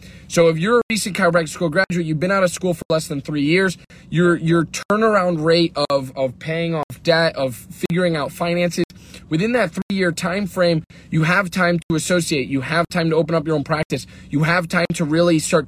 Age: 20-39